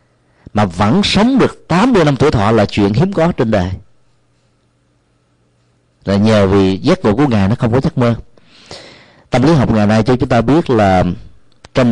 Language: Vietnamese